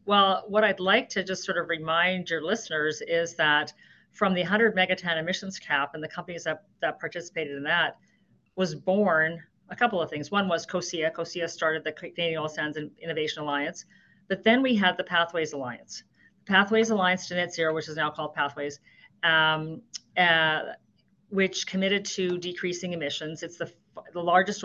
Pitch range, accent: 160-195 Hz, American